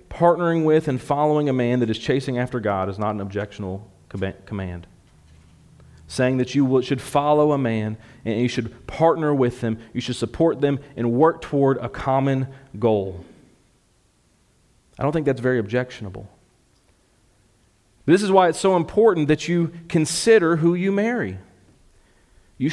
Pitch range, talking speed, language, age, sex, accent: 110-150 Hz, 155 wpm, English, 40-59, male, American